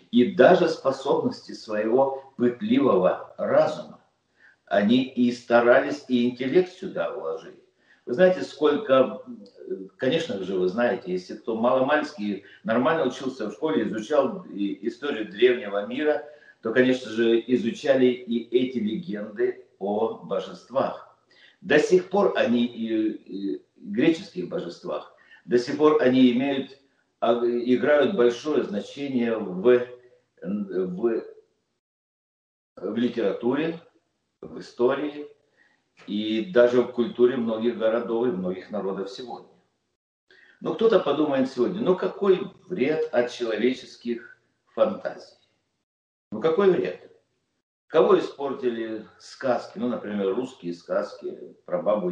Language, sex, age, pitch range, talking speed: Russian, male, 50-69, 120-185 Hz, 110 wpm